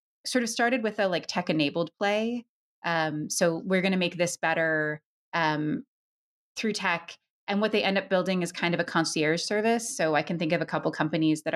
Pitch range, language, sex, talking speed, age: 165-215 Hz, English, female, 215 wpm, 30-49